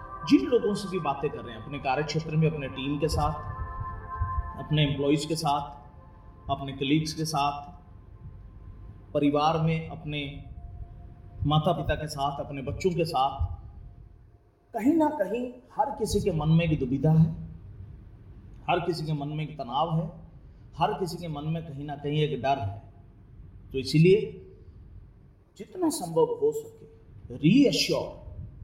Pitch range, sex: 105-165 Hz, male